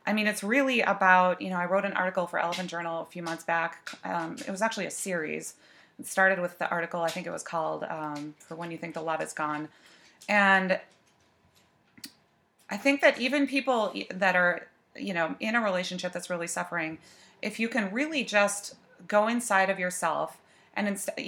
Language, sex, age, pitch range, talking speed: English, female, 30-49, 170-205 Hz, 195 wpm